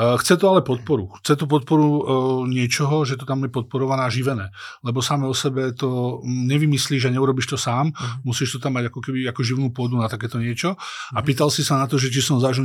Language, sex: Slovak, male